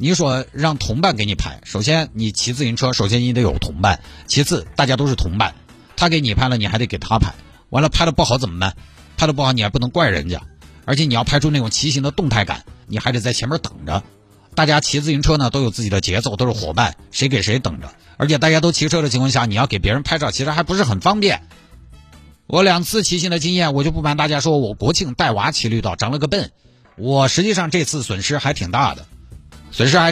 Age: 50-69